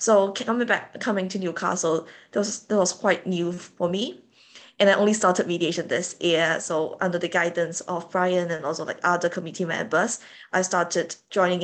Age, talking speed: 20-39, 185 wpm